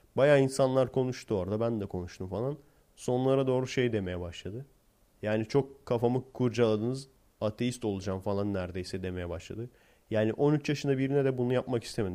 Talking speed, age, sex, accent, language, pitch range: 155 wpm, 30-49, male, native, Turkish, 100-130 Hz